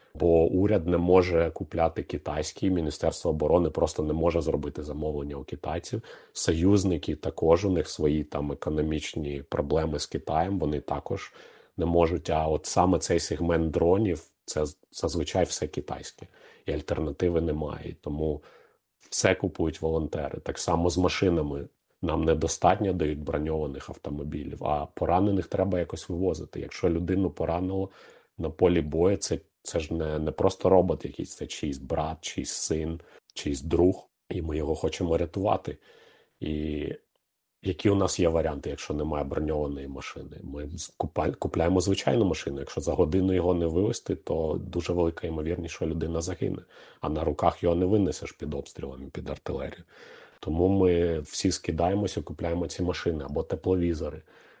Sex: male